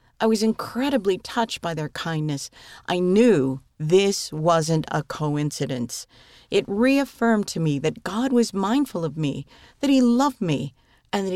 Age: 50-69